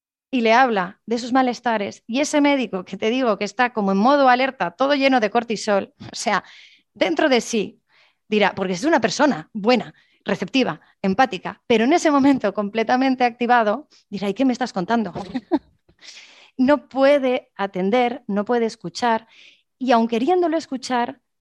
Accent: Spanish